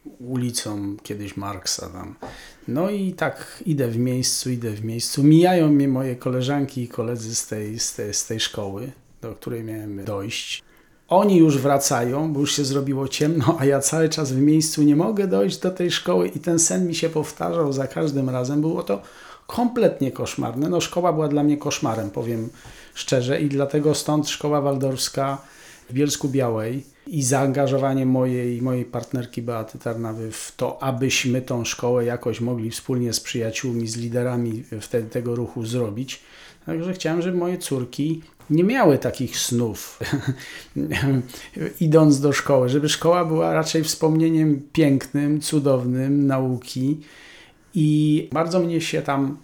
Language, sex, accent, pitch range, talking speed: Polish, male, native, 120-150 Hz, 155 wpm